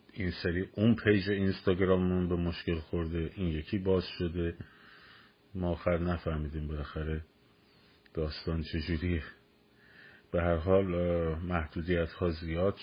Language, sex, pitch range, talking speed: Persian, male, 80-90 Hz, 110 wpm